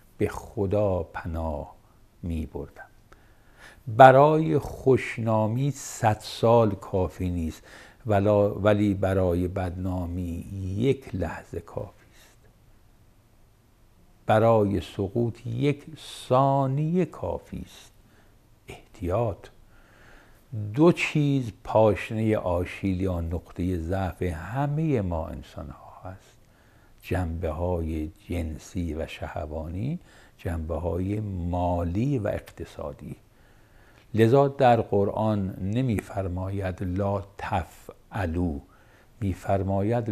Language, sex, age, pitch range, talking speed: Persian, male, 60-79, 90-115 Hz, 75 wpm